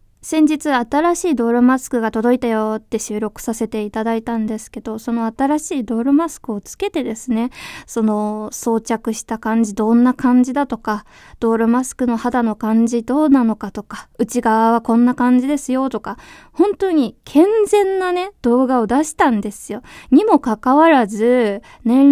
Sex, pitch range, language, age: female, 220-285 Hz, Japanese, 20-39